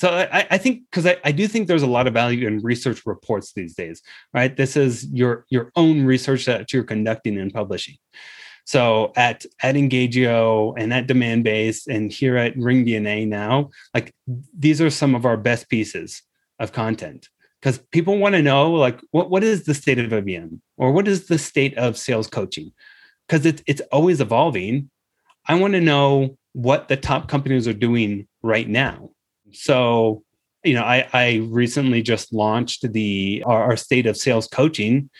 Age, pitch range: 30-49, 110-140 Hz